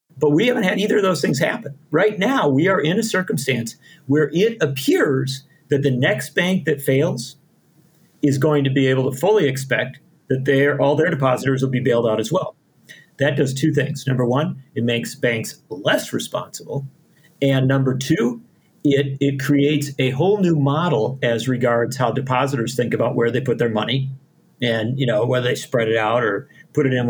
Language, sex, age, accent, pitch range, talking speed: English, male, 40-59, American, 130-160 Hz, 195 wpm